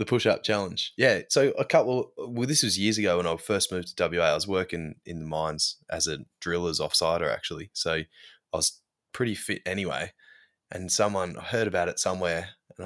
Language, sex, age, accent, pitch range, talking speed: English, male, 20-39, Australian, 85-110 Hz, 200 wpm